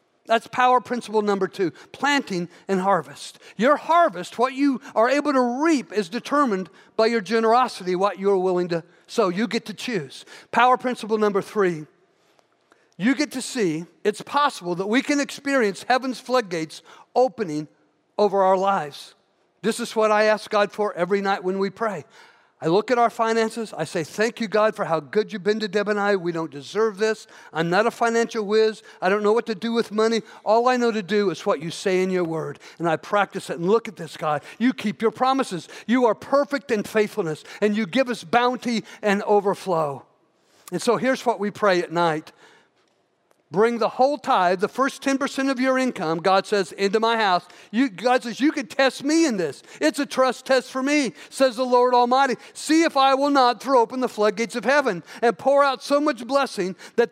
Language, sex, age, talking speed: English, male, 50-69, 205 wpm